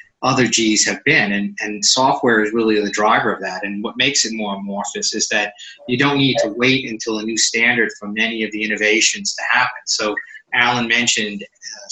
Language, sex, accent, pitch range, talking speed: English, male, American, 105-120 Hz, 205 wpm